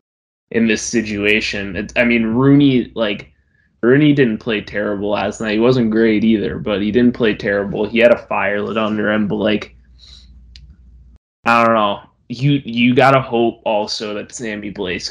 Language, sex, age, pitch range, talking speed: English, male, 20-39, 105-120 Hz, 170 wpm